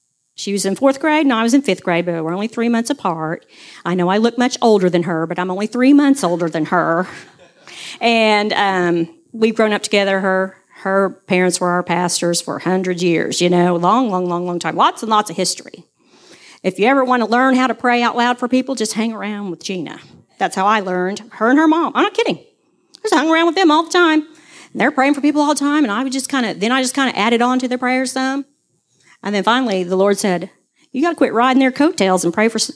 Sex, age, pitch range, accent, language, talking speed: female, 40-59, 185-280 Hz, American, English, 255 wpm